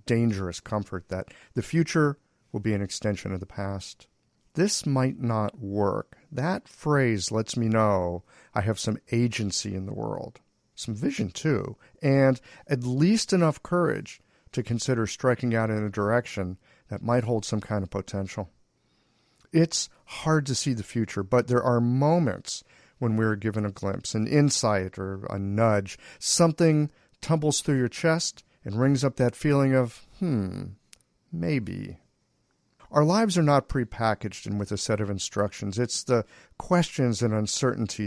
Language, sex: English, male